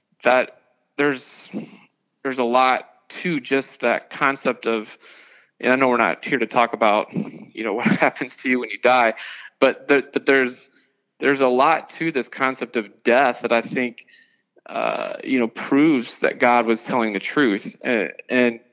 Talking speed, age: 175 wpm, 20-39